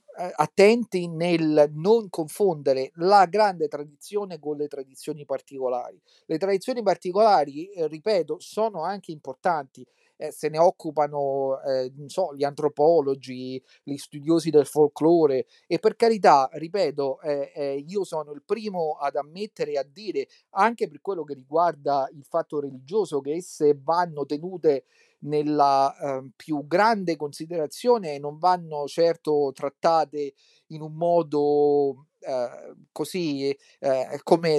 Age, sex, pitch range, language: 40-59, male, 145-185 Hz, Italian